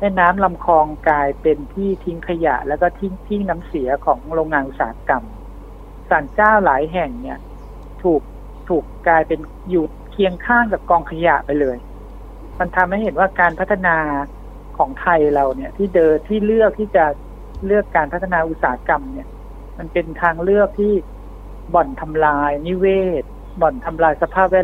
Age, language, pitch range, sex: 60-79, Thai, 155-190 Hz, male